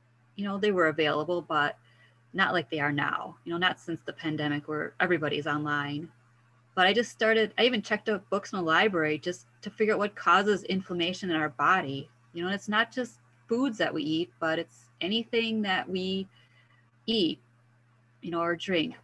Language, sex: English, female